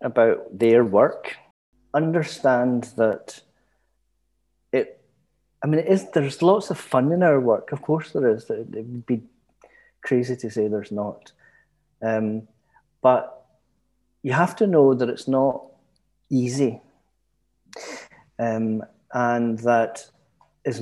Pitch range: 110-135 Hz